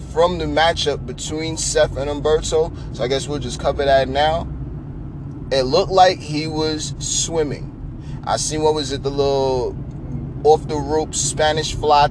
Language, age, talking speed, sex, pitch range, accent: English, 30-49, 155 wpm, male, 120-150 Hz, American